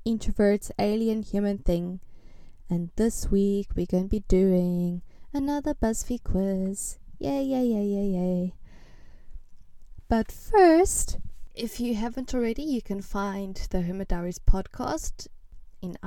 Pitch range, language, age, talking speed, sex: 180-240 Hz, English, 20-39, 125 wpm, female